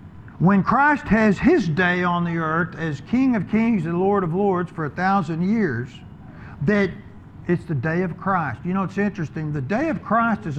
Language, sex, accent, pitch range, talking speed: English, male, American, 155-215 Hz, 200 wpm